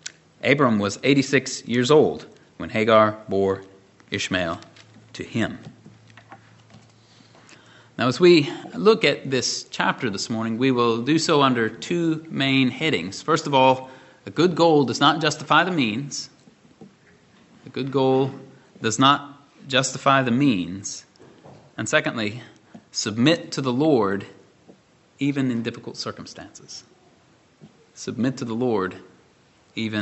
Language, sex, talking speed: English, male, 125 wpm